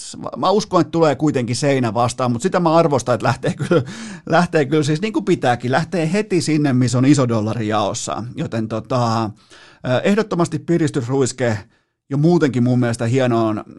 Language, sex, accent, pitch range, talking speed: Finnish, male, native, 120-160 Hz, 160 wpm